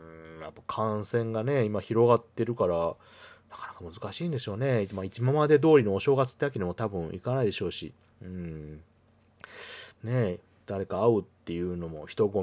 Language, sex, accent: Japanese, male, native